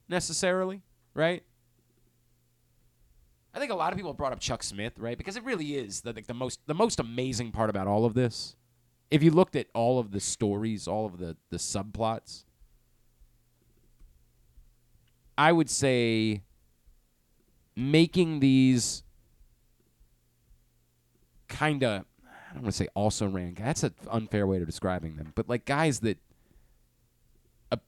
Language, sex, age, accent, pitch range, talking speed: English, male, 30-49, American, 90-140 Hz, 145 wpm